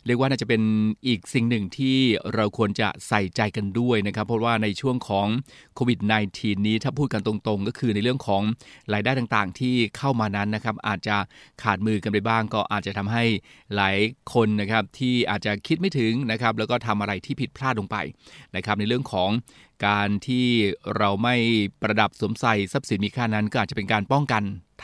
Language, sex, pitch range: Thai, male, 105-125 Hz